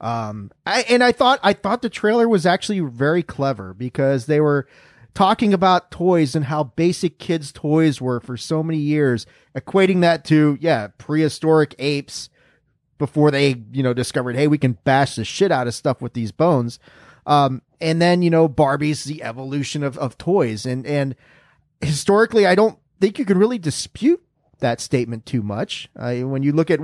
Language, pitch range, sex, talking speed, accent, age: English, 130-170 Hz, male, 185 wpm, American, 30-49